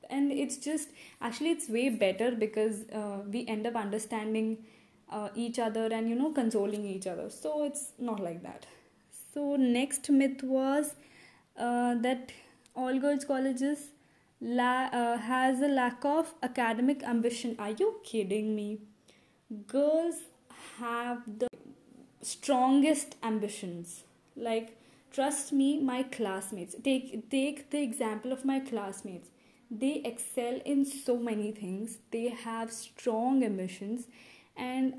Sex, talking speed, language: female, 130 wpm, English